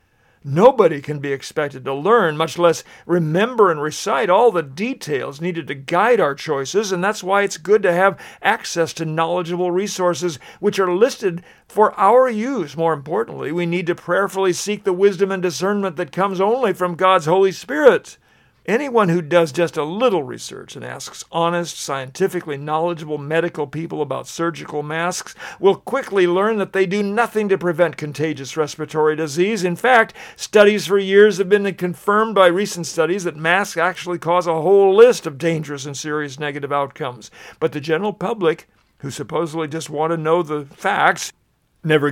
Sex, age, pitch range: male, 50-69, 155-195 Hz